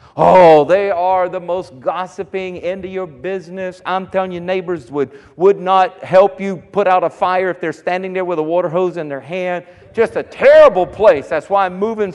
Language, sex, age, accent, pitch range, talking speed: English, male, 50-69, American, 150-185 Hz, 205 wpm